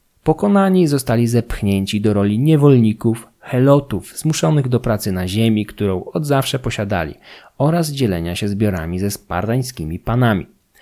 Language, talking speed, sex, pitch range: Polish, 130 wpm, male, 105-135 Hz